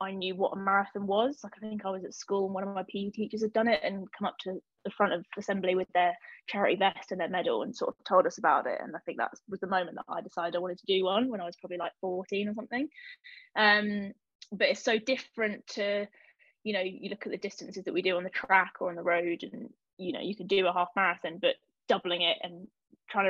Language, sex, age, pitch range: English, female, 20-39, 190-230 Hz